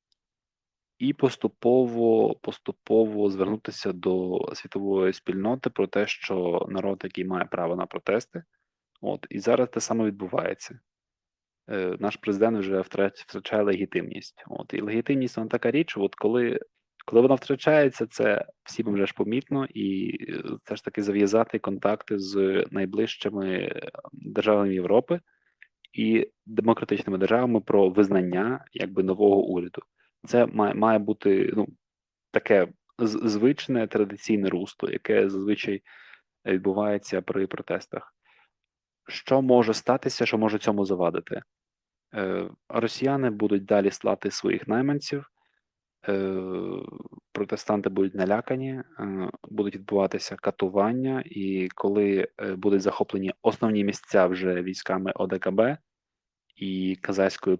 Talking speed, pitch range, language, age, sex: 115 wpm, 95-115 Hz, Ukrainian, 20-39, male